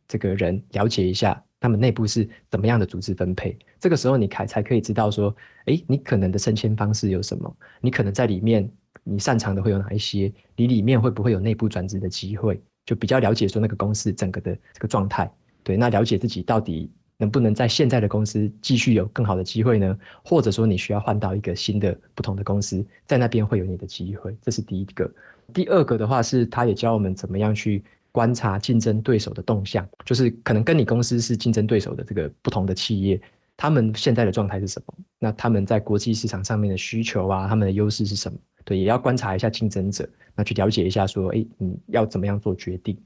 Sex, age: male, 20-39